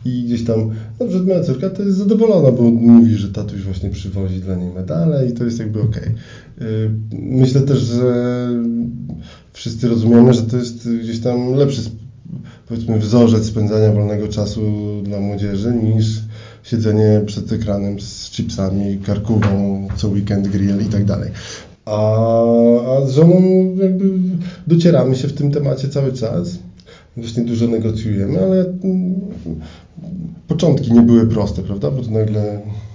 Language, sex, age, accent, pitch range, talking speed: Polish, male, 20-39, native, 105-120 Hz, 140 wpm